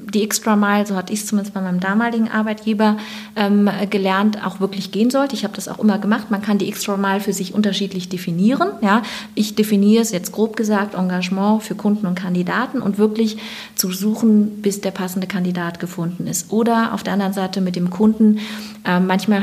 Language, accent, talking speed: German, German, 200 wpm